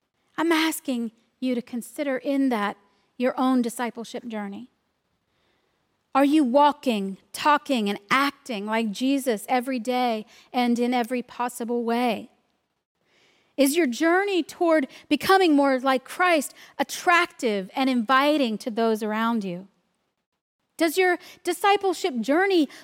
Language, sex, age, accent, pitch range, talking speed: English, female, 40-59, American, 245-340 Hz, 120 wpm